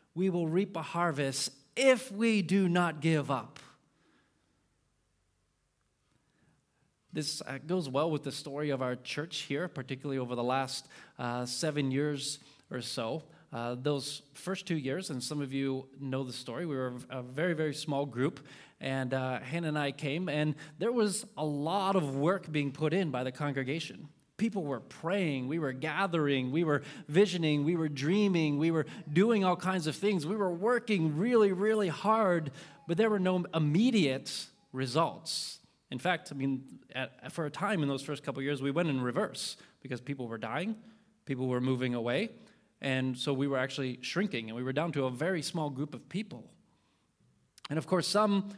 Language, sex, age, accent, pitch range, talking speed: English, male, 30-49, American, 135-180 Hz, 180 wpm